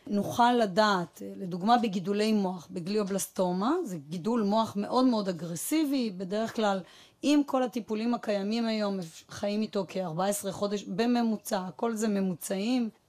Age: 30-49